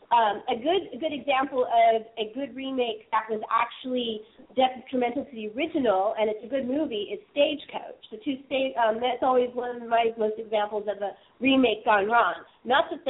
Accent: American